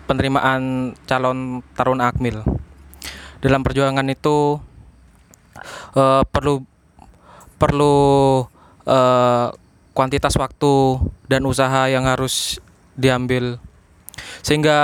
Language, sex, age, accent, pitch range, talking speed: Indonesian, male, 20-39, native, 130-155 Hz, 75 wpm